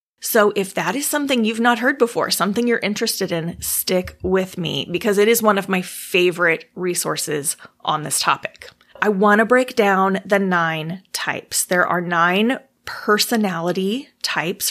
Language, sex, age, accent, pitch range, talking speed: English, female, 30-49, American, 180-225 Hz, 165 wpm